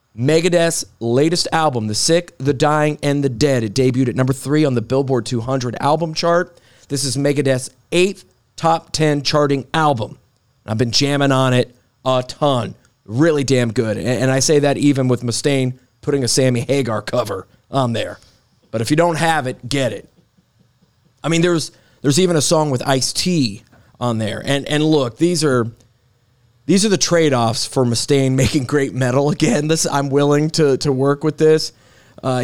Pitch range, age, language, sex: 115-145 Hz, 30-49, English, male